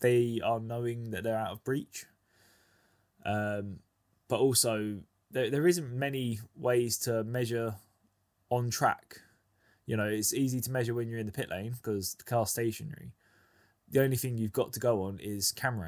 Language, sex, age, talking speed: English, male, 10-29, 175 wpm